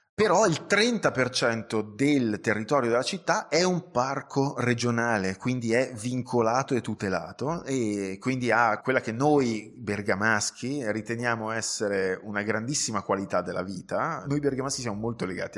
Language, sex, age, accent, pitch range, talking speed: Italian, male, 20-39, native, 105-130 Hz, 135 wpm